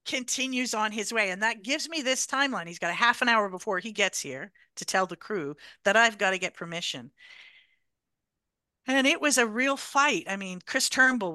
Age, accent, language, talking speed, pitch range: 50-69, American, English, 210 wpm, 170-225 Hz